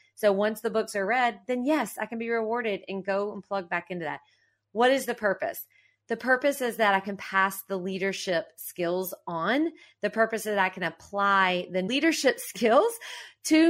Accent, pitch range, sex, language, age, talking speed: American, 190-235 Hz, female, English, 30-49, 195 wpm